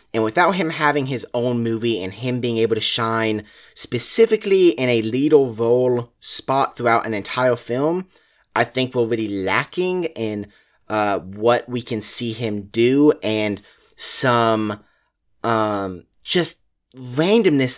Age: 30-49